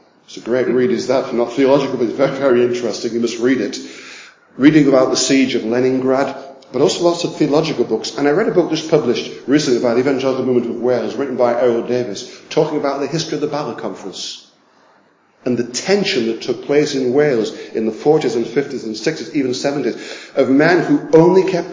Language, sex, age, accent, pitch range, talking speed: English, male, 50-69, British, 125-150 Hz, 215 wpm